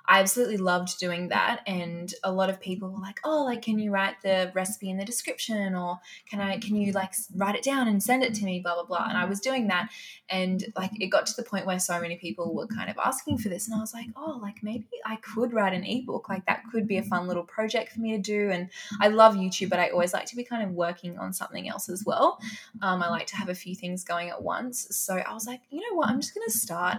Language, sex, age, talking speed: English, female, 20-39, 280 wpm